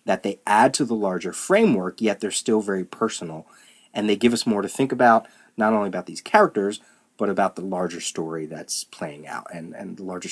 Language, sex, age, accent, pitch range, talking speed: English, male, 30-49, American, 95-125 Hz, 215 wpm